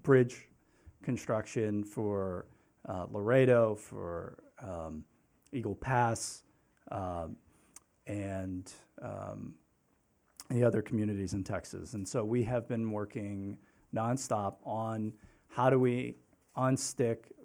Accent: American